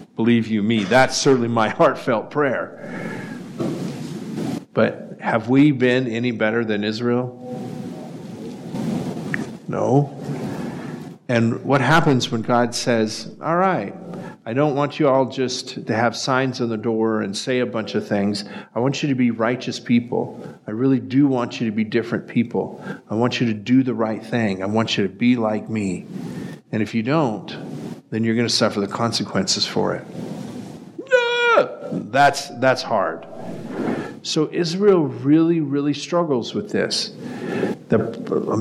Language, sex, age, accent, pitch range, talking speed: English, male, 50-69, American, 110-135 Hz, 150 wpm